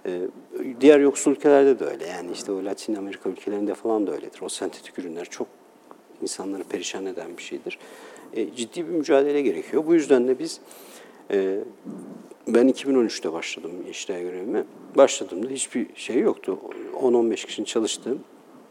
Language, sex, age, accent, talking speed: Turkish, male, 50-69, native, 140 wpm